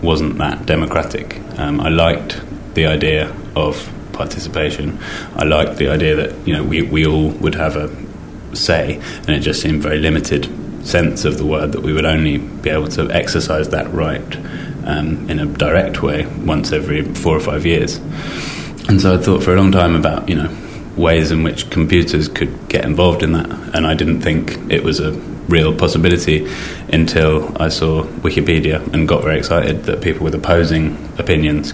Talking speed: 185 wpm